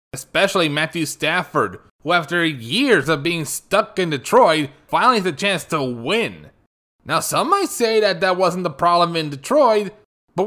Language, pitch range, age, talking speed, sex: English, 135-195 Hz, 20-39, 165 wpm, male